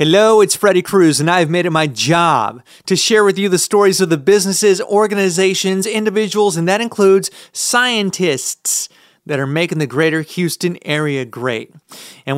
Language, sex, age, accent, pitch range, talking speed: English, male, 30-49, American, 150-195 Hz, 165 wpm